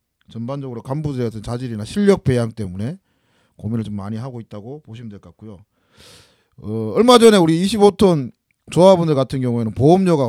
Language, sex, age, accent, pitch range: Korean, male, 40-59, native, 105-150 Hz